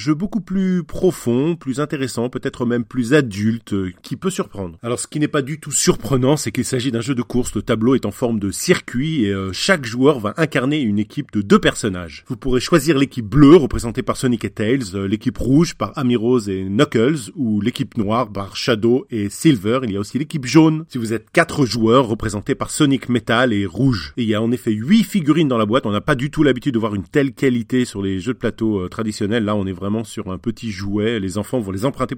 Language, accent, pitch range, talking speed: French, French, 105-145 Hz, 240 wpm